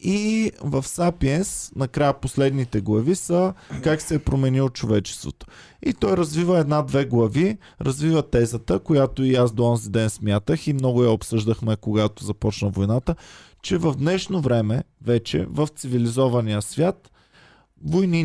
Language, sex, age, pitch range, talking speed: Bulgarian, male, 20-39, 115-160 Hz, 140 wpm